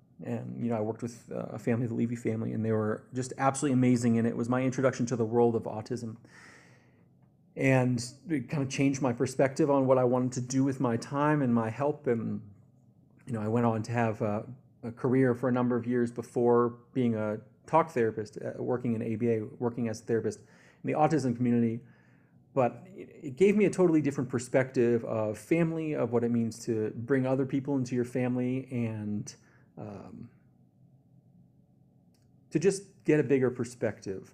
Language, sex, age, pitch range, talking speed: English, male, 30-49, 115-130 Hz, 185 wpm